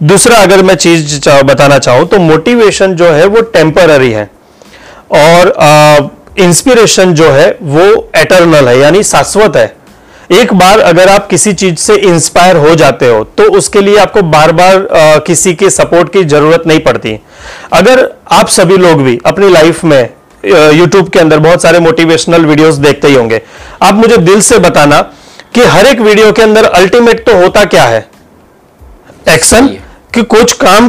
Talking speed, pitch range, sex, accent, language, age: 165 wpm, 160-225 Hz, male, native, Hindi, 30-49